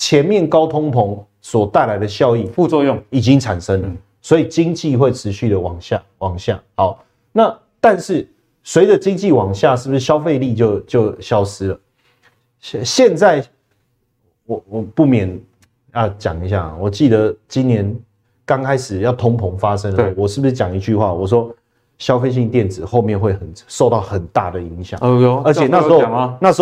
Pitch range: 110-145 Hz